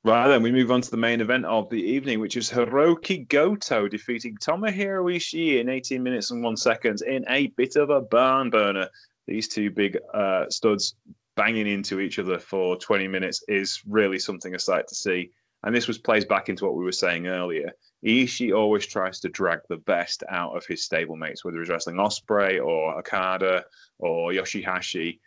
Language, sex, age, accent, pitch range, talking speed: English, male, 20-39, British, 95-120 Hz, 190 wpm